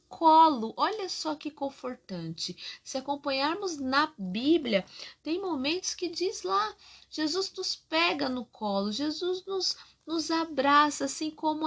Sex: female